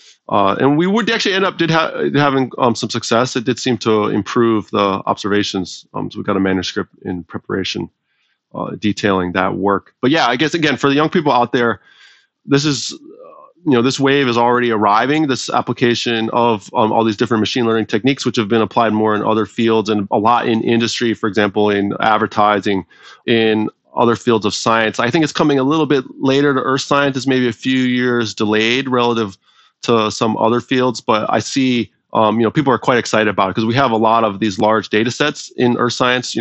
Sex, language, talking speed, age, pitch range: male, English, 220 wpm, 30-49, 105-125 Hz